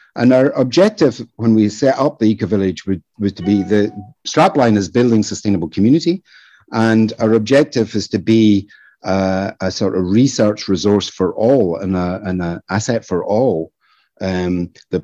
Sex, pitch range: male, 95-115 Hz